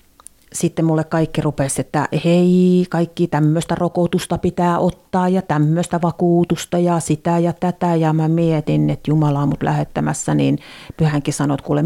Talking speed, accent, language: 150 wpm, native, Finnish